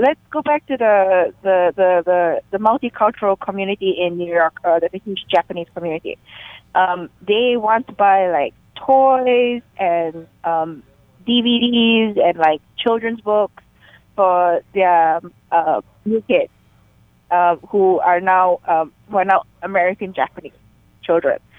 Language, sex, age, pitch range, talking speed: English, female, 20-39, 185-240 Hz, 140 wpm